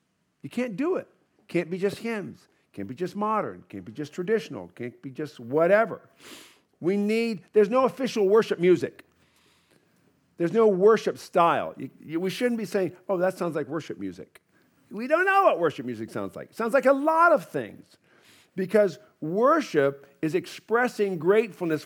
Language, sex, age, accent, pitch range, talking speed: English, male, 50-69, American, 135-210 Hz, 175 wpm